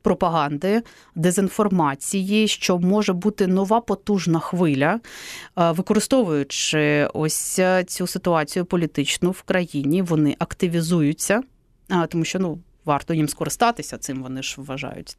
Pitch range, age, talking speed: 170-225 Hz, 30-49, 105 wpm